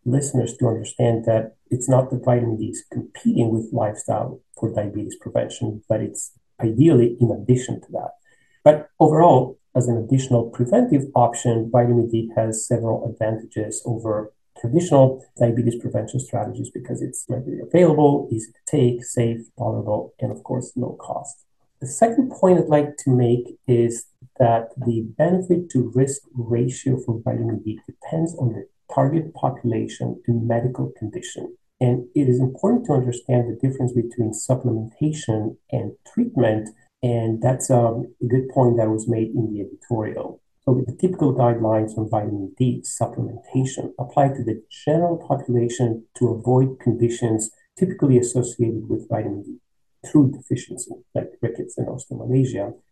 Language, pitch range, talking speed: English, 115-135 Hz, 145 wpm